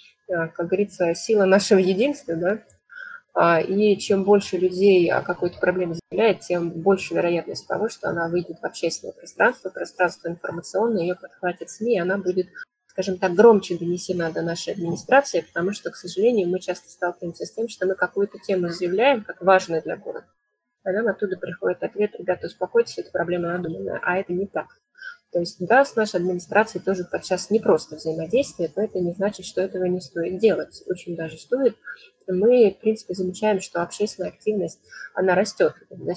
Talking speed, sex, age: 170 wpm, female, 20-39